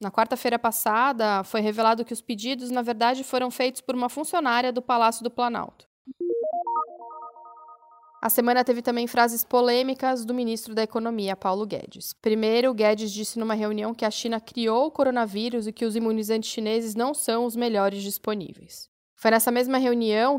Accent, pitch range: Brazilian, 215-255 Hz